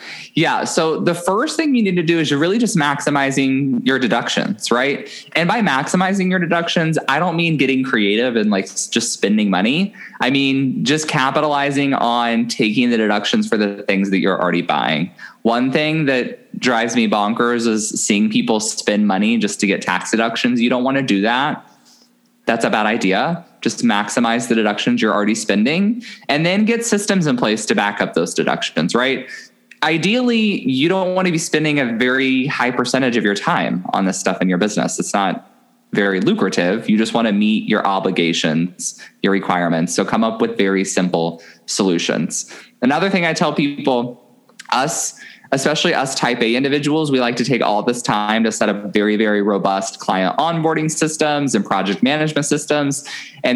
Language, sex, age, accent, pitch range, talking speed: English, male, 20-39, American, 105-165 Hz, 185 wpm